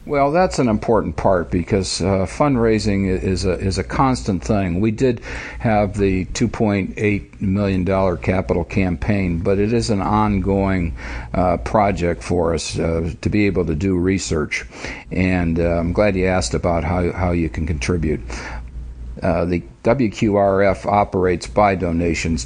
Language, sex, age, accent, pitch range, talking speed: English, male, 60-79, American, 90-110 Hz, 160 wpm